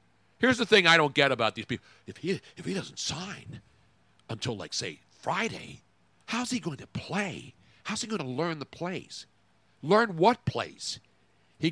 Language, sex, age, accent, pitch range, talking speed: English, male, 50-69, American, 110-165 Hz, 180 wpm